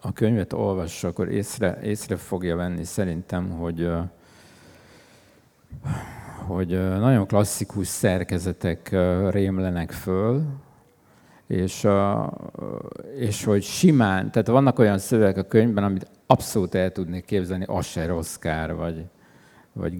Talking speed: 100 wpm